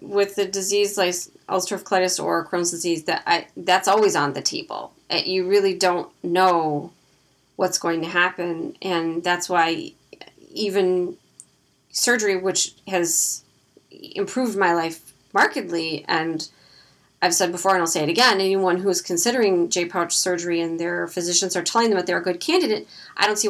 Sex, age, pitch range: female, 30-49, 175-220 Hz